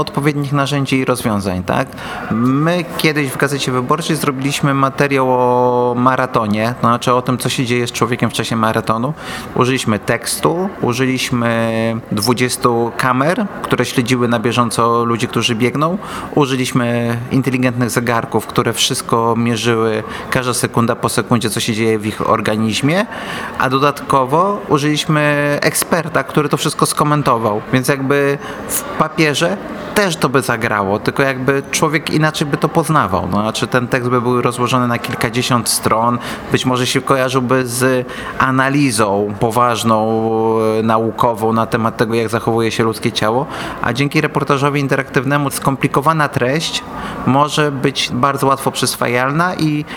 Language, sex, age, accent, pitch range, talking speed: Polish, male, 30-49, native, 115-145 Hz, 140 wpm